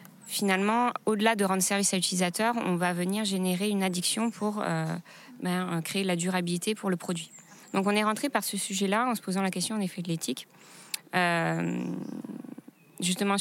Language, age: French, 20-39